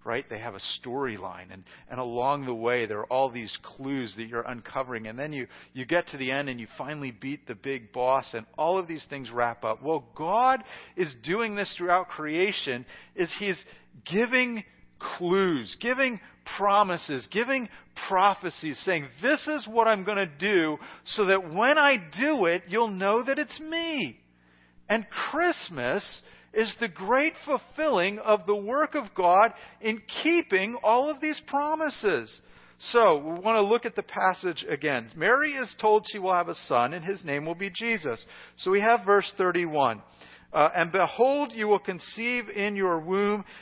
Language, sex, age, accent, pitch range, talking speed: English, male, 40-59, American, 145-220 Hz, 175 wpm